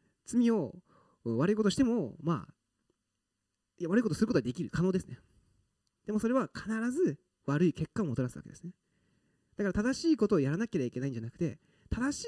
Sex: male